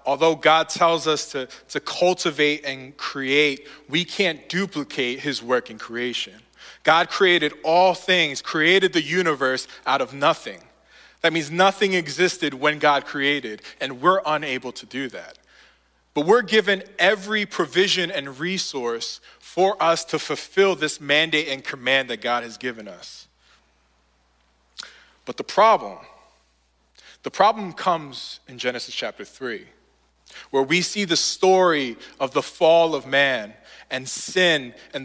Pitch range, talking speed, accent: 130-180 Hz, 140 wpm, American